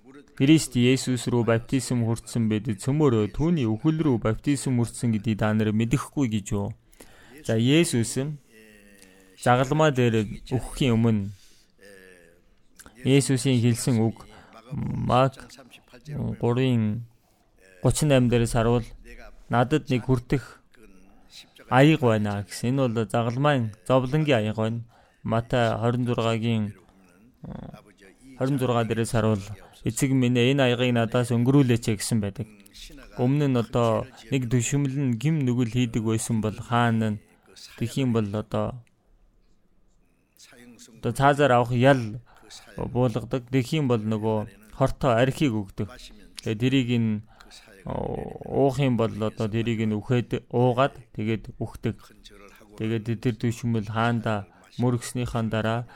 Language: English